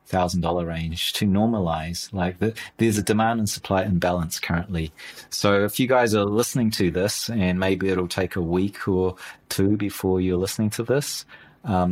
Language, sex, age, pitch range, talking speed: English, male, 30-49, 90-110 Hz, 175 wpm